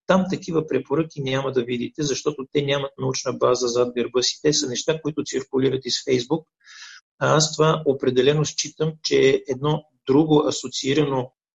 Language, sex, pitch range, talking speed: Bulgarian, male, 130-155 Hz, 155 wpm